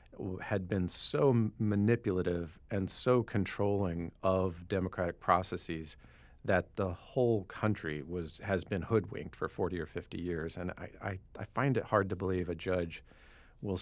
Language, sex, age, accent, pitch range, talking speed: English, male, 40-59, American, 90-110 Hz, 150 wpm